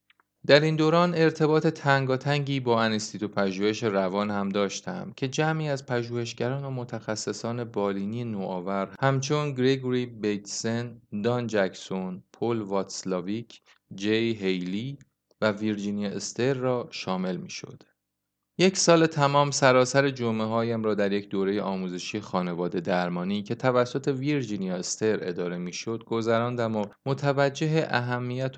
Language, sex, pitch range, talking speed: Persian, male, 100-130 Hz, 120 wpm